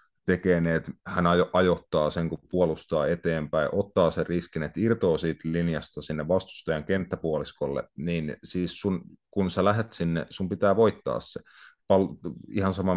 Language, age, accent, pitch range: Finnish, 30-49, native, 80-90 Hz